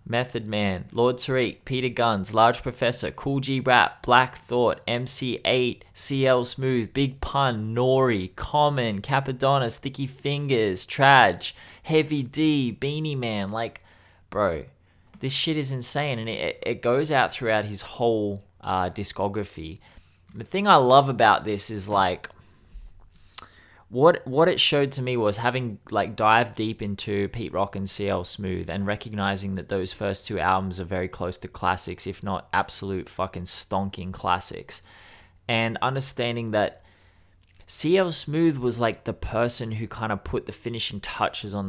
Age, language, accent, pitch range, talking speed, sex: 20-39, English, Australian, 95-130 Hz, 150 wpm, male